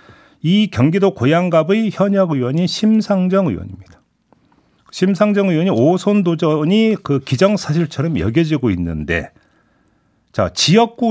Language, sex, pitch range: Korean, male, 130-195 Hz